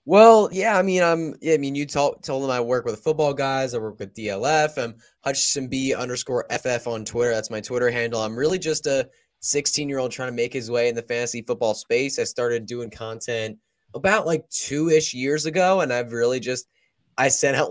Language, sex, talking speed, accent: English, male, 215 wpm, American